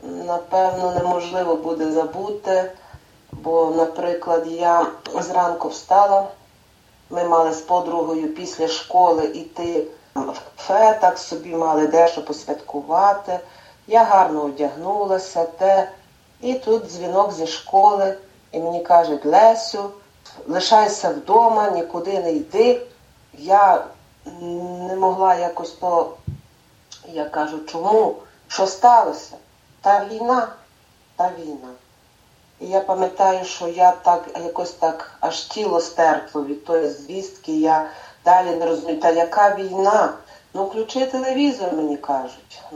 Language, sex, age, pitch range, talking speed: Ukrainian, female, 40-59, 165-200 Hz, 115 wpm